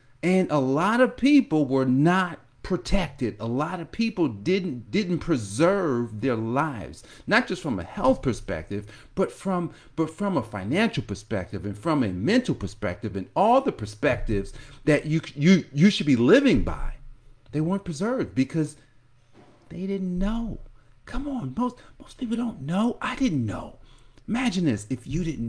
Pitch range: 115-180 Hz